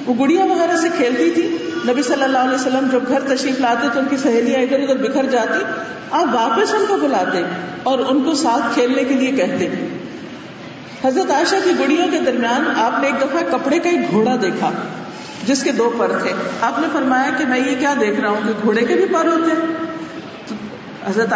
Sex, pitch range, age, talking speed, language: female, 235-320 Hz, 50-69, 200 wpm, Urdu